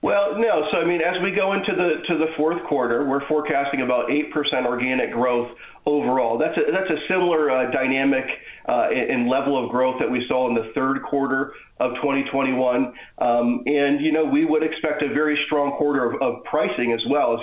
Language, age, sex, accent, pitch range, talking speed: English, 40-59, male, American, 120-145 Hz, 205 wpm